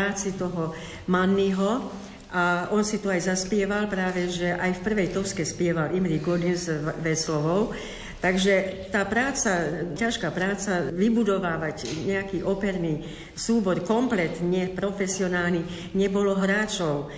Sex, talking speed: female, 115 wpm